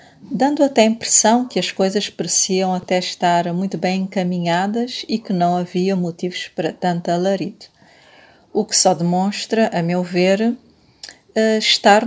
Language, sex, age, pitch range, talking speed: Portuguese, female, 40-59, 185-230 Hz, 145 wpm